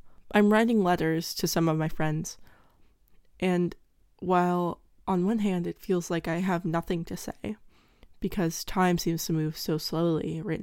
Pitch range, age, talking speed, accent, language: 165-195 Hz, 20-39, 165 wpm, American, English